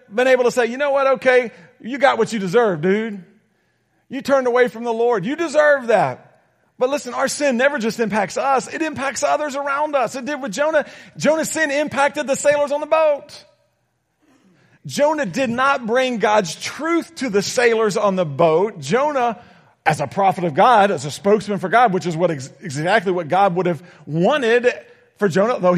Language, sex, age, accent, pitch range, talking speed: English, male, 40-59, American, 200-270 Hz, 195 wpm